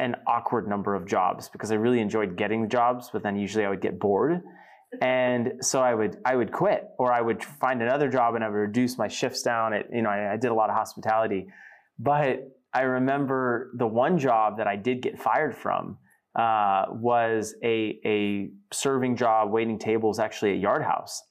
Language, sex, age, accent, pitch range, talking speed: English, male, 20-39, American, 105-130 Hz, 205 wpm